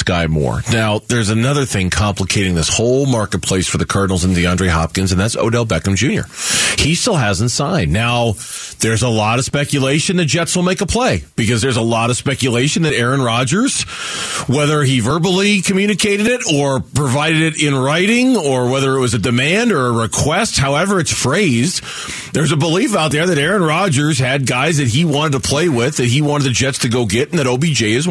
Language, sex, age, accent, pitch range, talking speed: English, male, 40-59, American, 110-145 Hz, 205 wpm